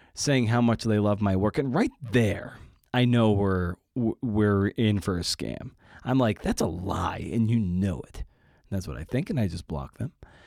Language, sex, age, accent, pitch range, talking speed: English, male, 30-49, American, 95-120 Hz, 210 wpm